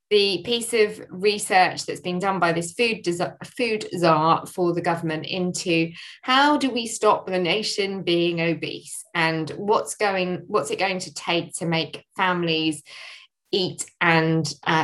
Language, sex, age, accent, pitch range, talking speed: English, female, 20-39, British, 160-190 Hz, 160 wpm